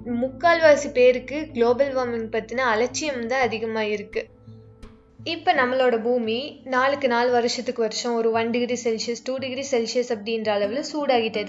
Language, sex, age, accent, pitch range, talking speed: Tamil, female, 20-39, native, 215-260 Hz, 135 wpm